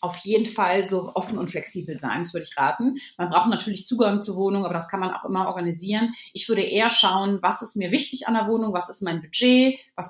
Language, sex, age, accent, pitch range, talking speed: German, female, 30-49, German, 190-240 Hz, 245 wpm